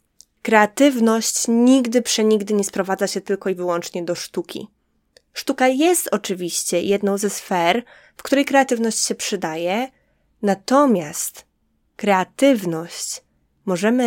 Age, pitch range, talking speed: 20-39, 180-245 Hz, 105 wpm